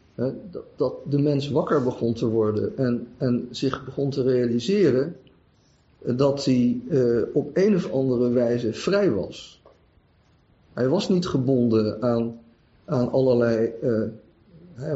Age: 50-69